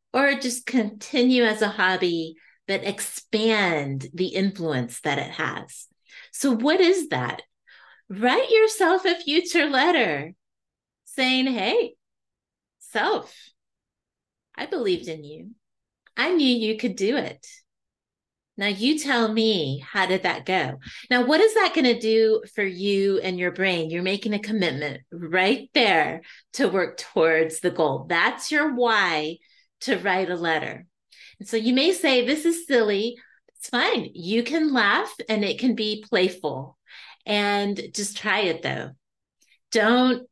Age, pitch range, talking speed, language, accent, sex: 30-49, 185-250 Hz, 145 wpm, English, American, female